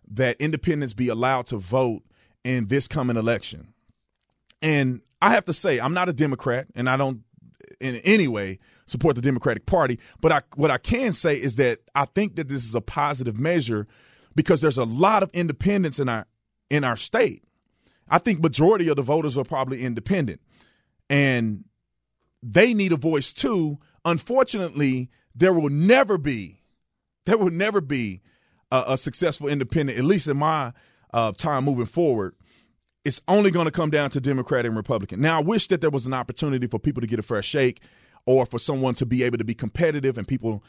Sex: male